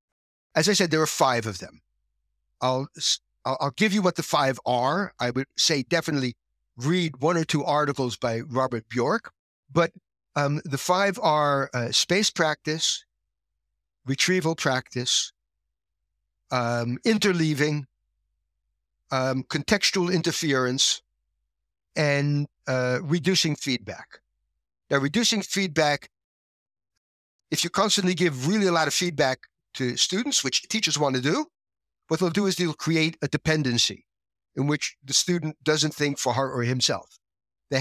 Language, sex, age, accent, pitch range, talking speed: English, male, 60-79, American, 125-170 Hz, 135 wpm